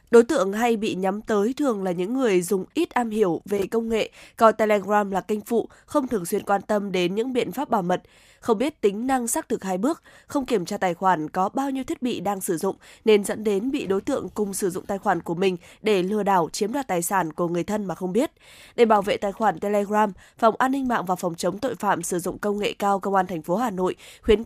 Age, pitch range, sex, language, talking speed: 20-39, 190-235 Hz, female, Vietnamese, 265 wpm